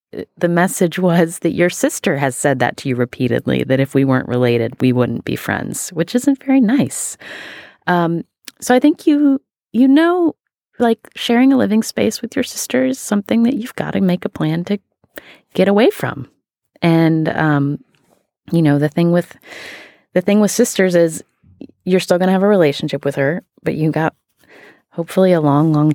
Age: 30-49